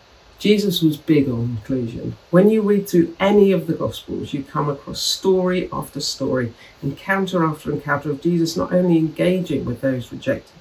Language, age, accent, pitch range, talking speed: English, 50-69, British, 140-185 Hz, 170 wpm